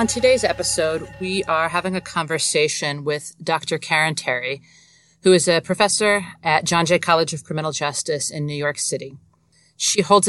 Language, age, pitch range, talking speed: English, 40-59, 140-170 Hz, 170 wpm